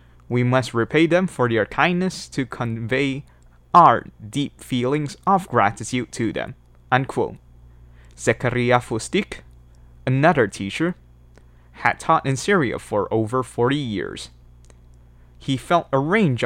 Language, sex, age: Chinese, male, 20-39